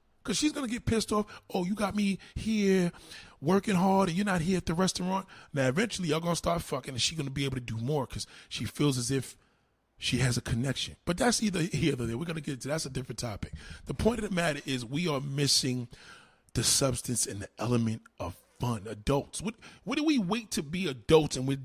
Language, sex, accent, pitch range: Japanese, male, American, 135-215 Hz